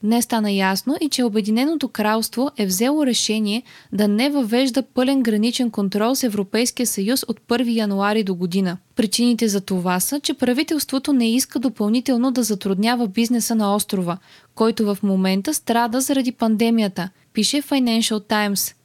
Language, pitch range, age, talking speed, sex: Bulgarian, 205-250 Hz, 20-39, 150 wpm, female